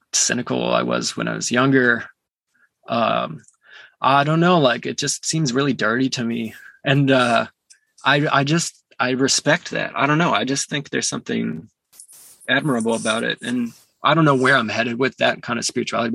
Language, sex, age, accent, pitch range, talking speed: English, male, 20-39, American, 120-140 Hz, 185 wpm